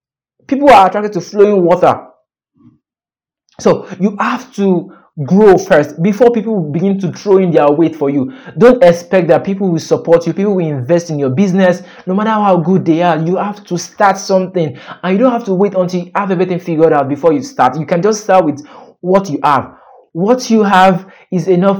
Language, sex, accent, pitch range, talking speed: English, male, Nigerian, 160-205 Hz, 205 wpm